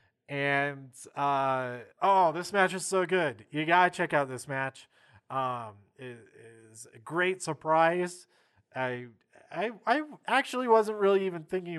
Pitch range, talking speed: 125-175 Hz, 145 wpm